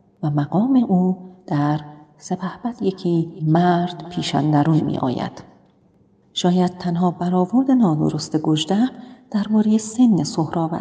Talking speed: 105 wpm